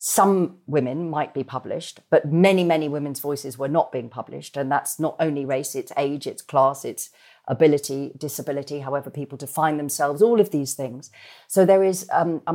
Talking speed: 185 wpm